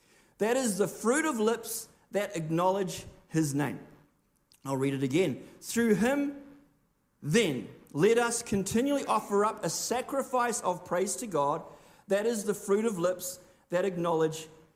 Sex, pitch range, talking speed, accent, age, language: male, 180-245 Hz, 145 wpm, Australian, 50-69, English